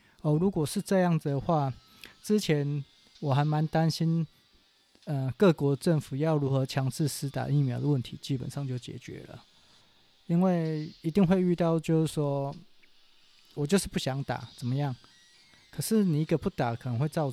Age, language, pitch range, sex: 20-39, Chinese, 130-165 Hz, male